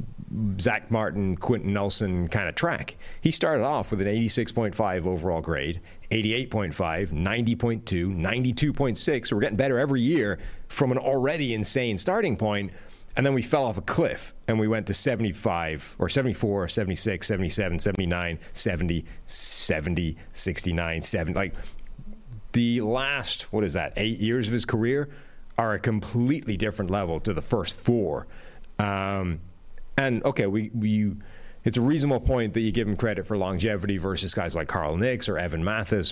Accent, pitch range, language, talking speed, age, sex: American, 90-110 Hz, English, 165 wpm, 40-59, male